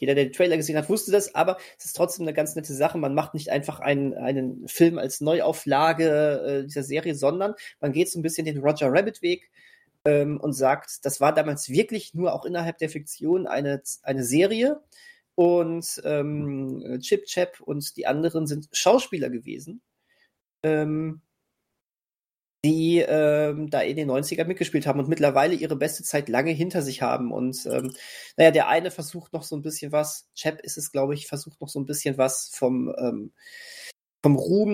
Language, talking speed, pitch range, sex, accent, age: German, 185 wpm, 145-175 Hz, male, German, 30-49